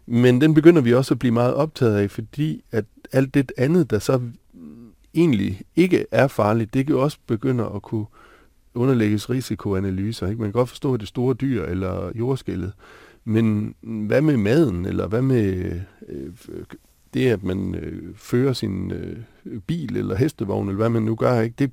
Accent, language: native, Danish